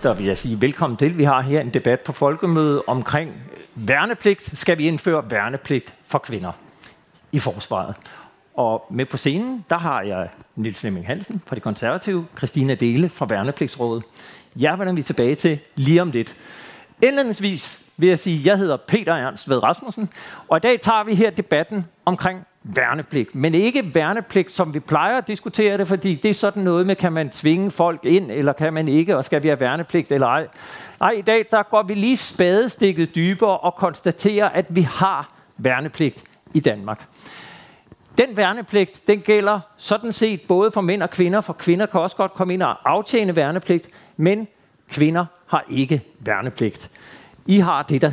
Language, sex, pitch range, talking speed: Danish, male, 140-200 Hz, 180 wpm